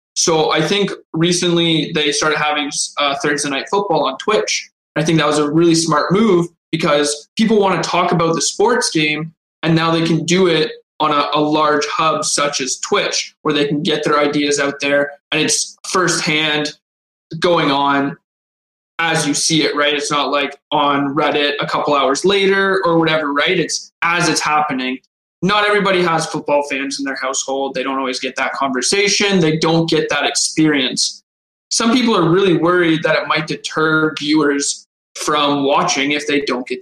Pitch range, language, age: 145-170 Hz, English, 20-39